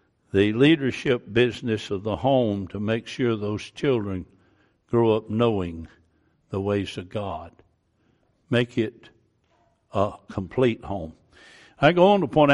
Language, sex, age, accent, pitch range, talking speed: English, male, 60-79, American, 105-135 Hz, 135 wpm